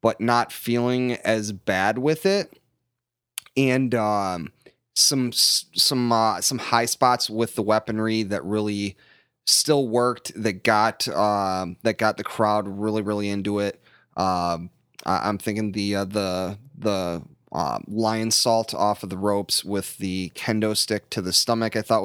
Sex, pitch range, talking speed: male, 100-115 Hz, 150 wpm